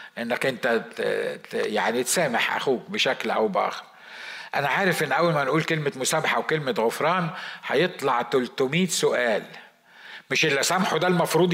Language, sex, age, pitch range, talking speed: Arabic, male, 50-69, 160-220 Hz, 135 wpm